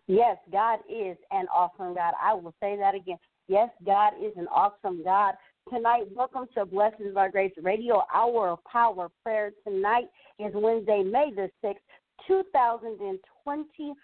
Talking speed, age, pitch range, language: 150 wpm, 40-59, 195-250 Hz, English